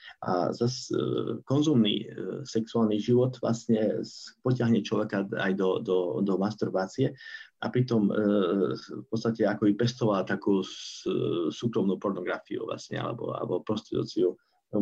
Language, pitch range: Slovak, 100-120 Hz